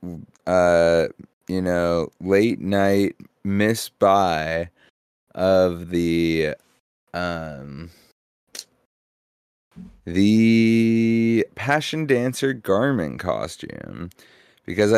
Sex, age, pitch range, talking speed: male, 30-49, 85-100 Hz, 65 wpm